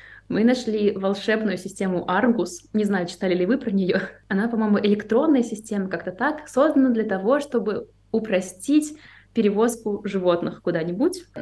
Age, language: 20-39, Russian